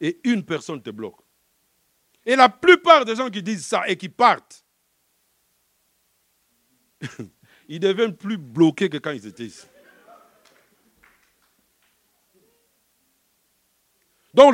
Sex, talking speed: male, 105 wpm